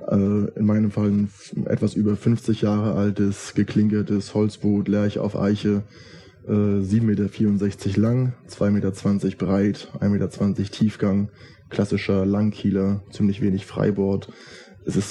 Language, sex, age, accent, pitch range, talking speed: German, male, 20-39, German, 100-110 Hz, 120 wpm